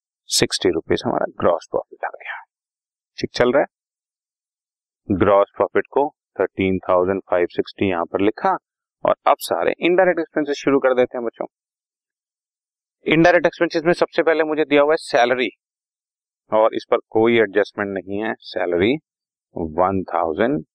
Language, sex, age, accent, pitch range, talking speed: Hindi, male, 40-59, native, 95-120 Hz, 140 wpm